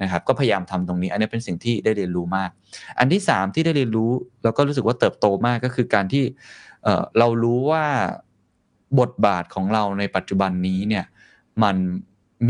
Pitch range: 95-120 Hz